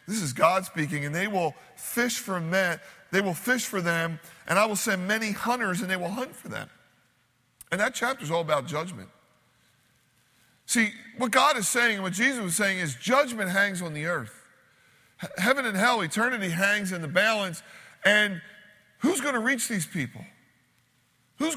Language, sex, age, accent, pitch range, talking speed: English, male, 40-59, American, 155-205 Hz, 185 wpm